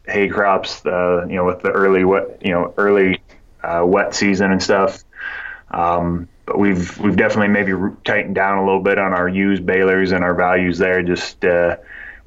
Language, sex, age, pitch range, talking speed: English, male, 20-39, 90-105 Hz, 180 wpm